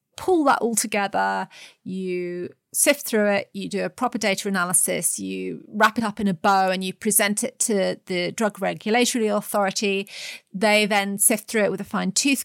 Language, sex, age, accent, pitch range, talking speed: English, female, 30-49, British, 190-230 Hz, 190 wpm